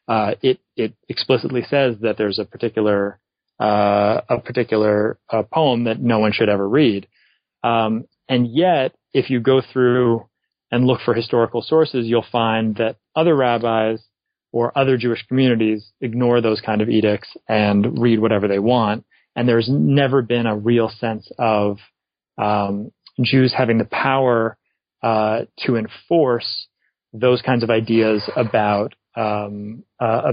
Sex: male